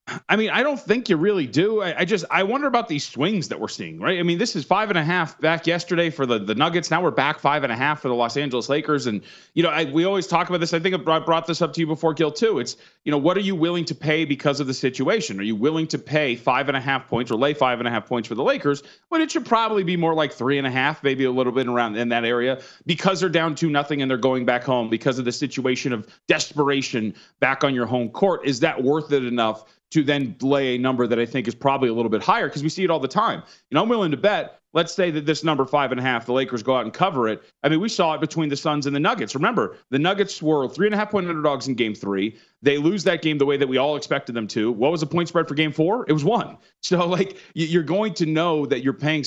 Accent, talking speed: American, 300 wpm